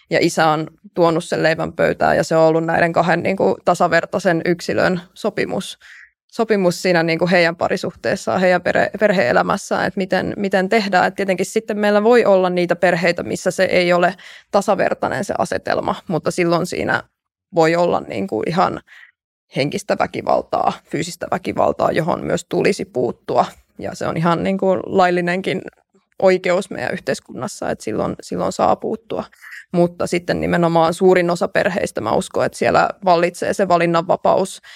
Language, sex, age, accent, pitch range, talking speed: Finnish, female, 20-39, native, 170-190 Hz, 155 wpm